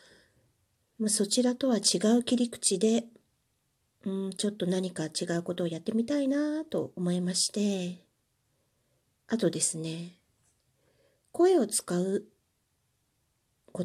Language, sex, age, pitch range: Japanese, female, 40-59, 170-235 Hz